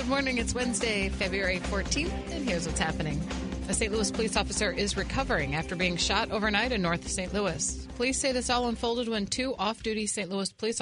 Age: 40-59